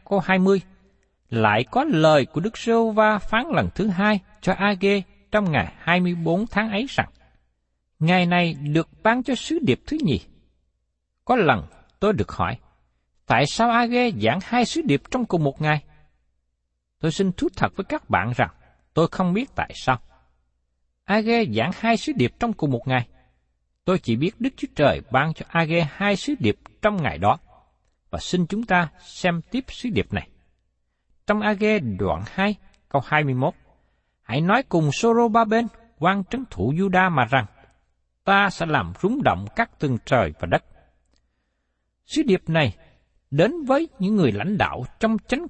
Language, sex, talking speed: Vietnamese, male, 170 wpm